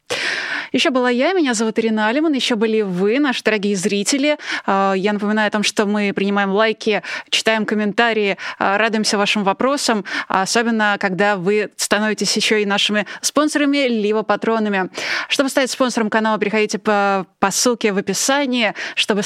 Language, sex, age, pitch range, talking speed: Russian, female, 20-39, 205-235 Hz, 145 wpm